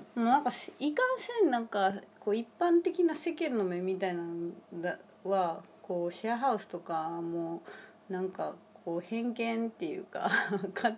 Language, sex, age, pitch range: Japanese, female, 20-39, 185-255 Hz